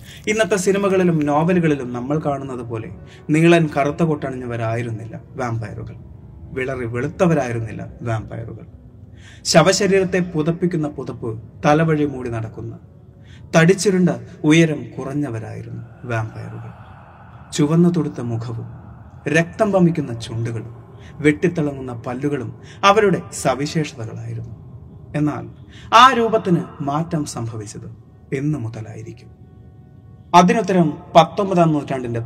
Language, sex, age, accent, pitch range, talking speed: Malayalam, male, 30-49, native, 115-160 Hz, 80 wpm